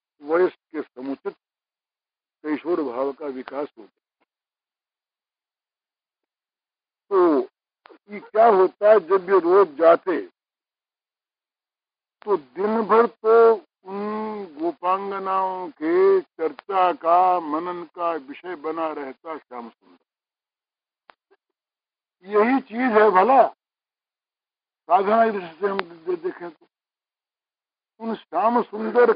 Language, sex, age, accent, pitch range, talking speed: Hindi, male, 60-79, native, 170-235 Hz, 95 wpm